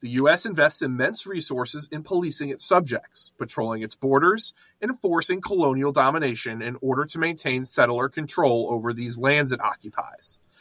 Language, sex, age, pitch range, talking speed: English, male, 30-49, 130-185 Hz, 155 wpm